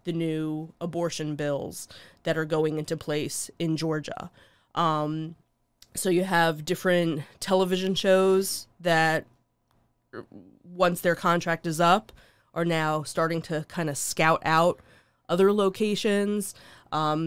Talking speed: 120 wpm